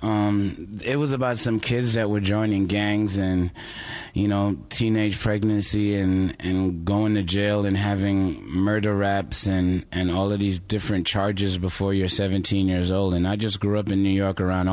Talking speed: 185 wpm